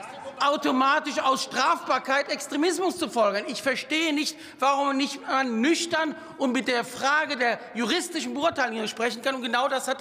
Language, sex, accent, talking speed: German, male, German, 155 wpm